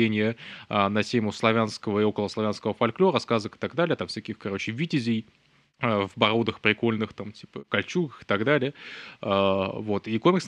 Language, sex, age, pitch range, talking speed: Russian, male, 20-39, 105-120 Hz, 155 wpm